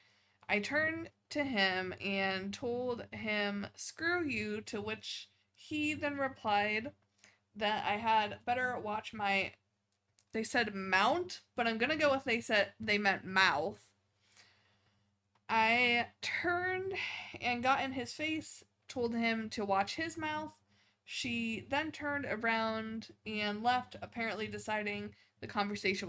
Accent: American